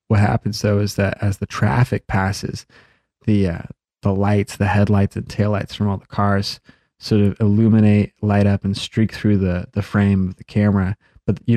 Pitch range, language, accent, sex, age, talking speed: 100-110 Hz, English, American, male, 20-39, 190 wpm